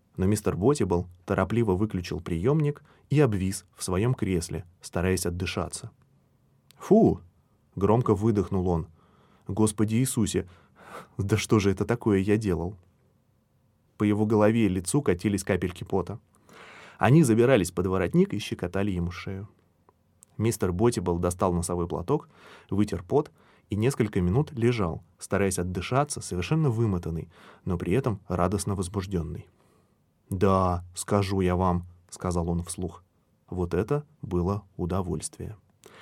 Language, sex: Russian, male